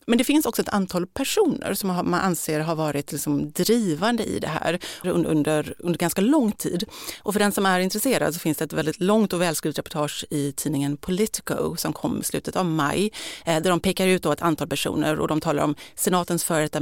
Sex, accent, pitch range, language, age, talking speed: female, native, 155-205 Hz, Swedish, 30-49, 210 wpm